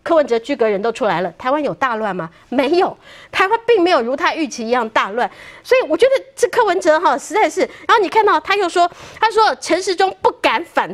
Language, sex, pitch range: Chinese, female, 260-370 Hz